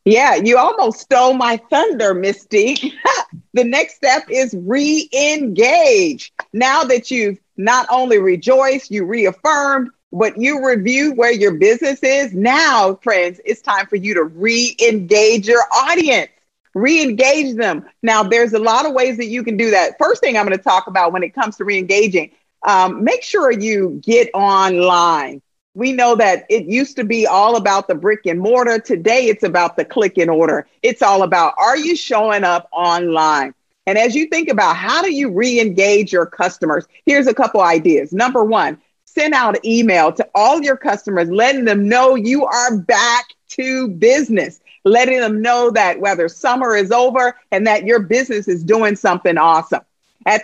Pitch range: 205-265 Hz